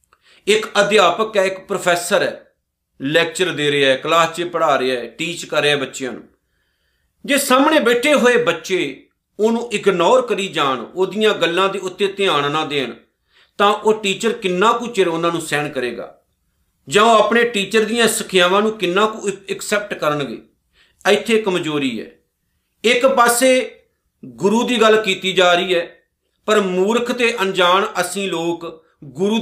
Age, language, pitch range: 50-69, Punjabi, 165-215 Hz